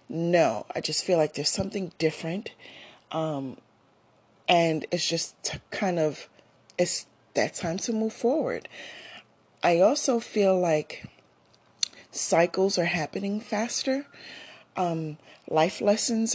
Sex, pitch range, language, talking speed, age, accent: female, 155-210 Hz, English, 115 wpm, 30-49, American